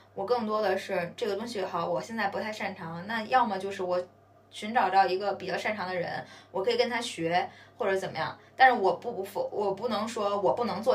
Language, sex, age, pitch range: Chinese, female, 20-39, 180-245 Hz